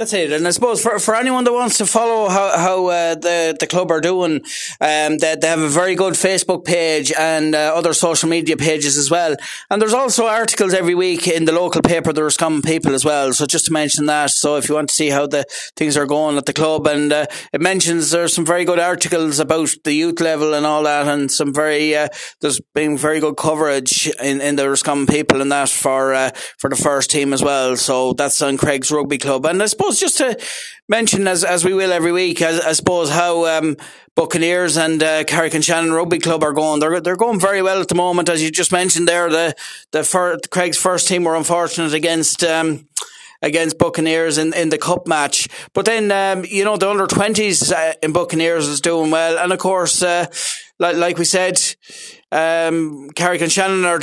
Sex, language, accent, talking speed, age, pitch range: male, English, Irish, 225 wpm, 30-49, 155-180 Hz